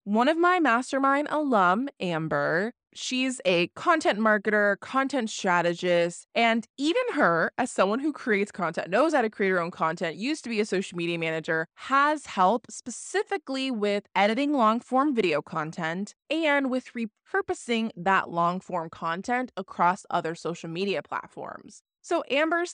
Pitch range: 180-265 Hz